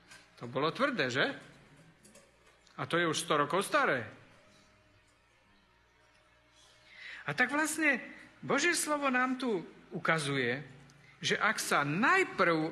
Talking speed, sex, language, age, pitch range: 110 wpm, male, Slovak, 50-69, 145-230 Hz